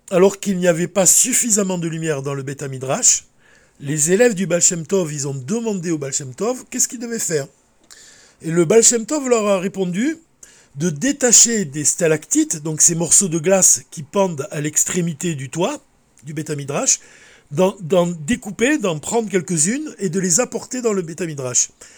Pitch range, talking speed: 165-230 Hz, 170 wpm